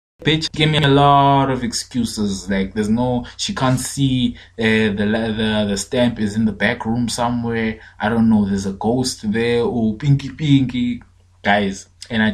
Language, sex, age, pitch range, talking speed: English, male, 20-39, 95-120 Hz, 180 wpm